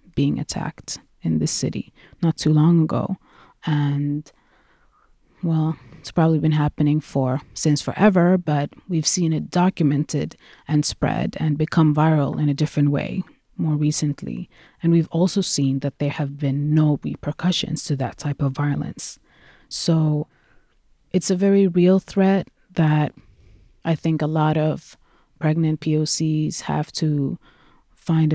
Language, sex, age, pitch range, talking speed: English, female, 30-49, 145-165 Hz, 140 wpm